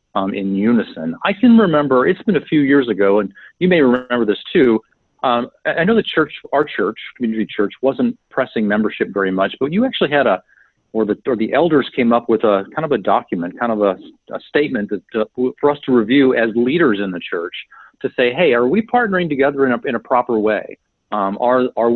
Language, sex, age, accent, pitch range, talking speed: English, male, 40-59, American, 105-140 Hz, 225 wpm